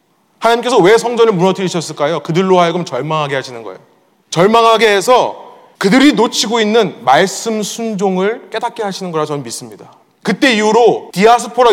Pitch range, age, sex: 180-245 Hz, 30-49, male